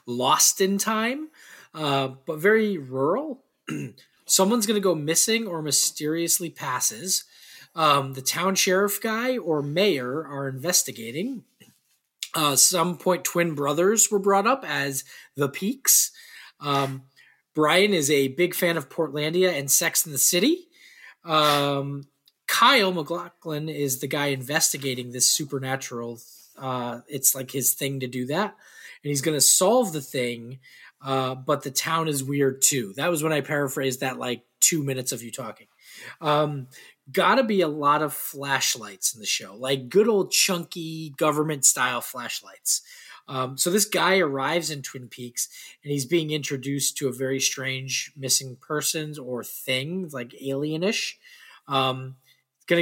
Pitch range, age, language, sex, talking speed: 135-185 Hz, 20-39, English, male, 150 wpm